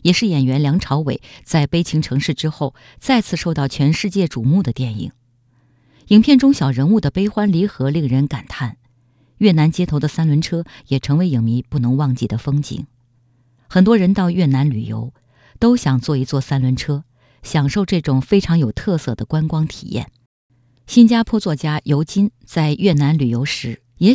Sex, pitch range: female, 125-170 Hz